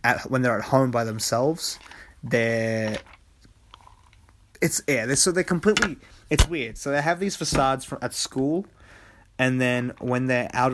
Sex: male